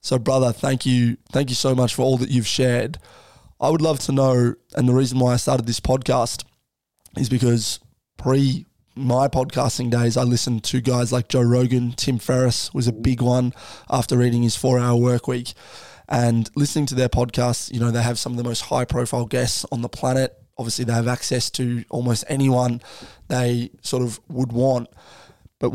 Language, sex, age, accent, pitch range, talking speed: English, male, 20-39, Australian, 120-130 Hz, 195 wpm